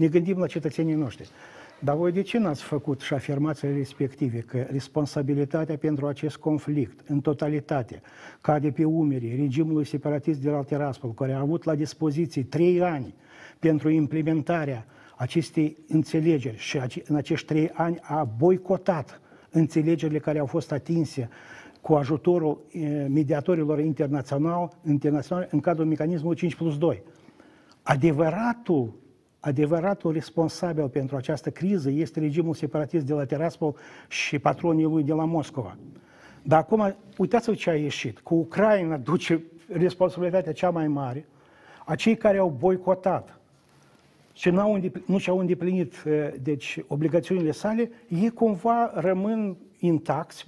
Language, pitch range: Romanian, 150-180 Hz